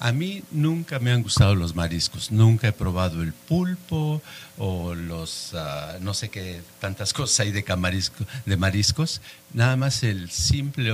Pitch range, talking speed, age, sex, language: 90-125 Hz, 165 wpm, 50-69, male, Spanish